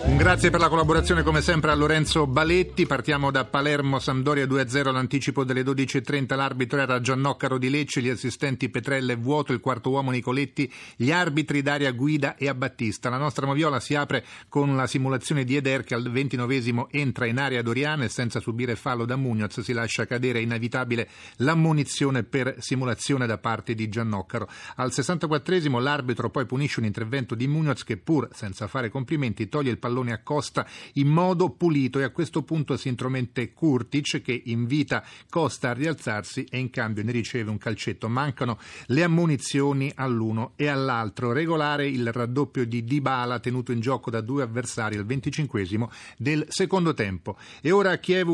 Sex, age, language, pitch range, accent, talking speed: male, 40-59, Italian, 120-145 Hz, native, 170 wpm